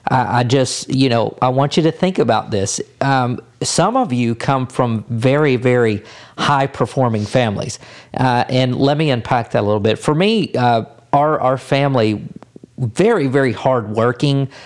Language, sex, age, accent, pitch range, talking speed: English, male, 50-69, American, 120-140 Hz, 160 wpm